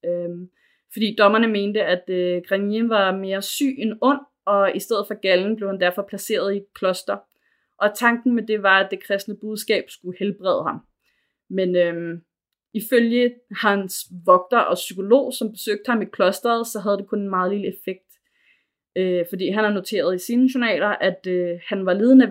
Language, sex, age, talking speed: Danish, female, 20-39, 185 wpm